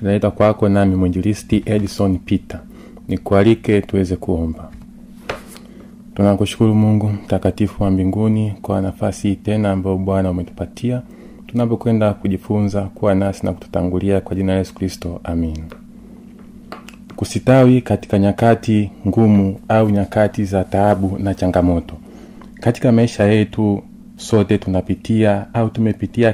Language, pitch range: Swahili, 100-115 Hz